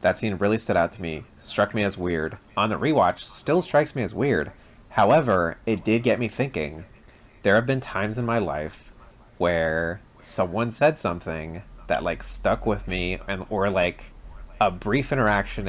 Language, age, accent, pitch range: English, 30-49, American, 85-115 Hz